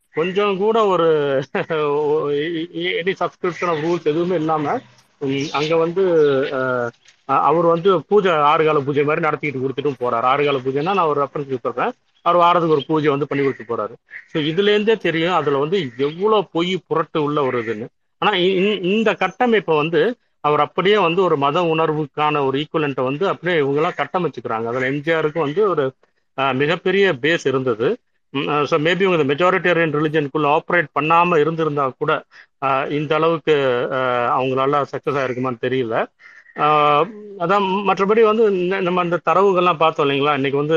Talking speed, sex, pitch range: 140 wpm, male, 135-175 Hz